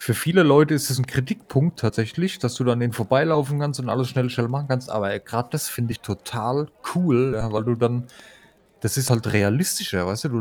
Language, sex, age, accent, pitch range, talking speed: German, male, 30-49, German, 115-140 Hz, 215 wpm